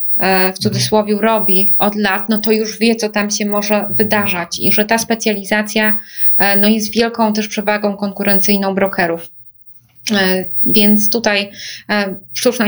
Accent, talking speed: native, 135 wpm